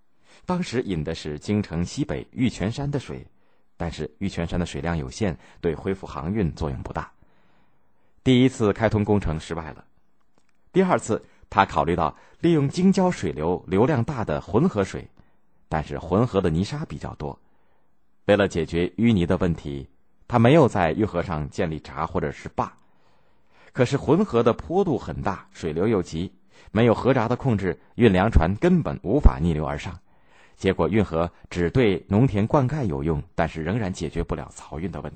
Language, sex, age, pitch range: Chinese, male, 30-49, 80-110 Hz